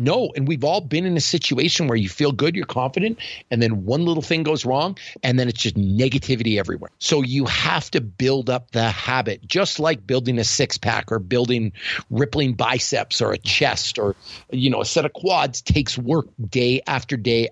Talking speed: 205 wpm